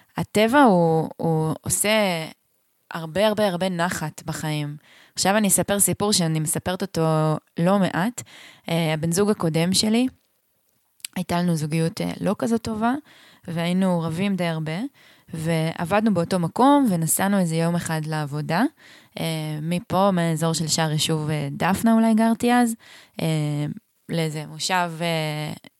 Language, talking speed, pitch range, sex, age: Hebrew, 135 wpm, 160-200 Hz, female, 20-39